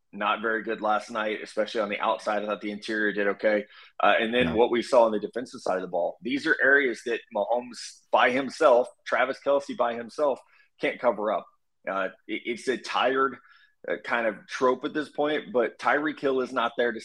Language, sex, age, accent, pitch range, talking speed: English, male, 20-39, American, 105-135 Hz, 210 wpm